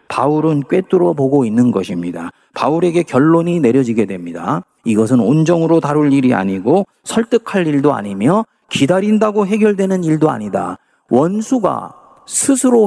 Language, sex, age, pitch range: Korean, male, 40-59, 115-185 Hz